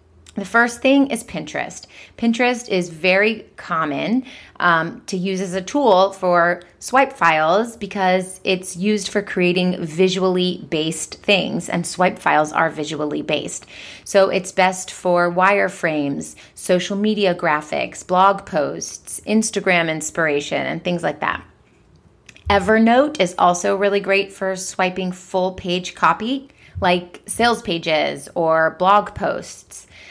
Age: 30-49